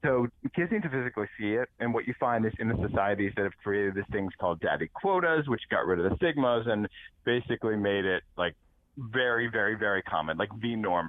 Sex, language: male, English